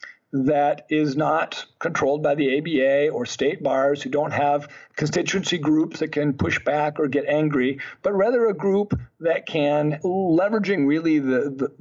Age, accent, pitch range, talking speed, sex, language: 50-69, American, 140-155 Hz, 160 wpm, male, English